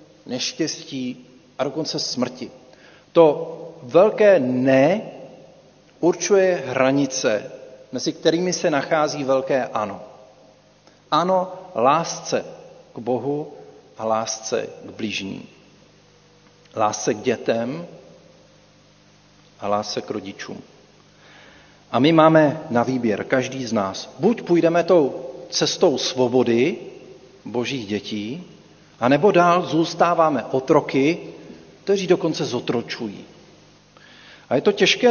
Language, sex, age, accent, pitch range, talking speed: Czech, male, 40-59, native, 125-165 Hz, 95 wpm